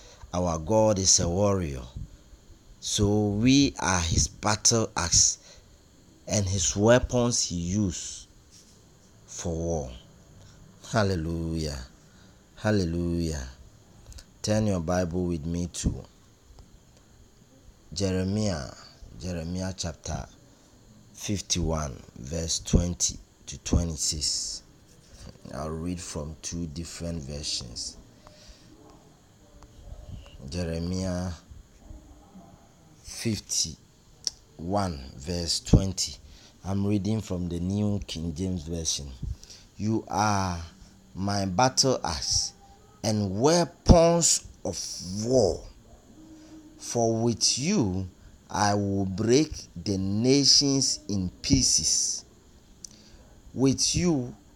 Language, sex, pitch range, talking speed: English, male, 85-105 Hz, 80 wpm